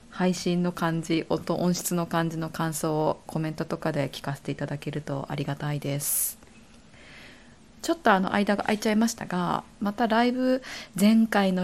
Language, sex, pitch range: Japanese, female, 160-215 Hz